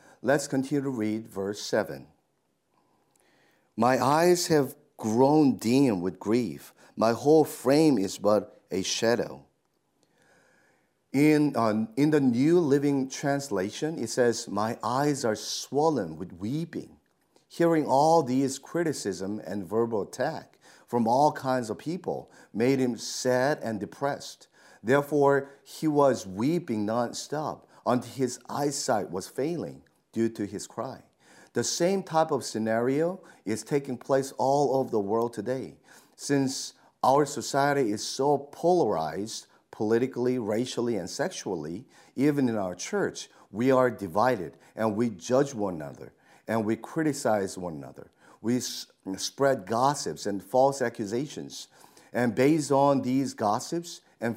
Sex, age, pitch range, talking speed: male, 50-69, 110-140 Hz, 130 wpm